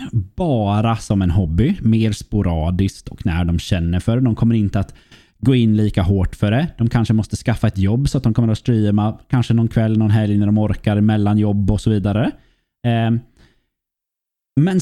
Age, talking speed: 20-39, 190 wpm